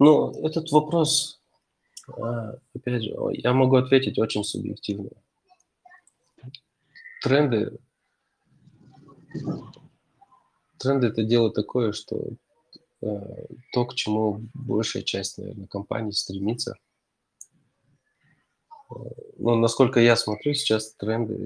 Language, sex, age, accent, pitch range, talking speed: Russian, male, 20-39, native, 105-130 Hz, 85 wpm